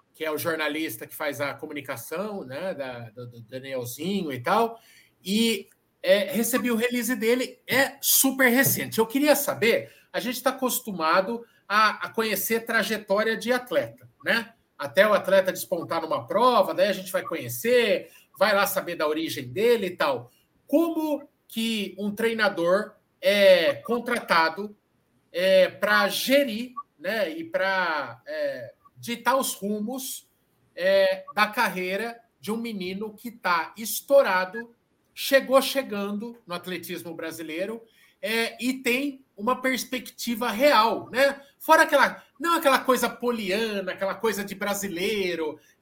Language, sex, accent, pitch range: Portuguese, male, Brazilian, 190-260 Hz